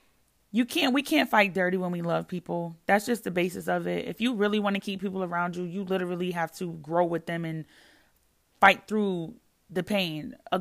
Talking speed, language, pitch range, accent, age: 215 wpm, English, 175-220 Hz, American, 30-49